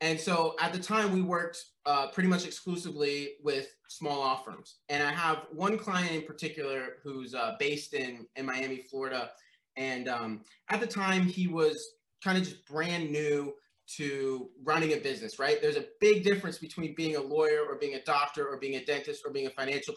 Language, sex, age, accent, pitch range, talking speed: English, male, 20-39, American, 135-195 Hz, 200 wpm